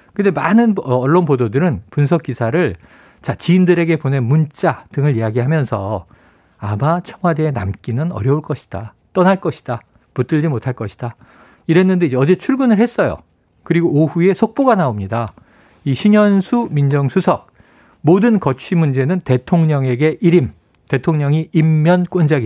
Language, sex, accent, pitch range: Korean, male, native, 120-175 Hz